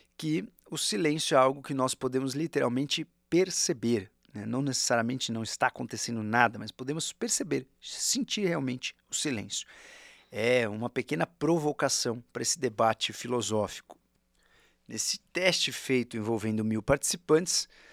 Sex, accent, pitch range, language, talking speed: male, Brazilian, 120-180 Hz, Portuguese, 125 wpm